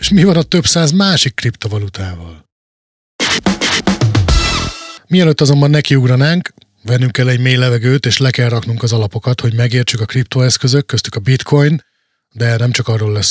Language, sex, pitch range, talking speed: Hungarian, male, 115-145 Hz, 155 wpm